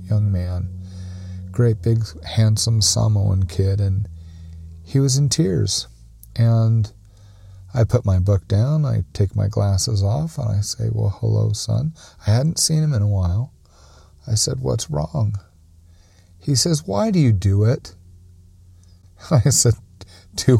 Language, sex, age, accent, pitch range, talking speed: English, male, 40-59, American, 95-130 Hz, 145 wpm